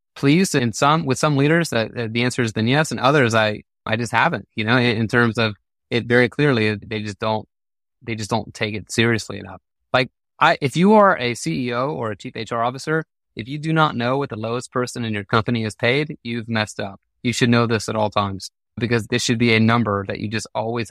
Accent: American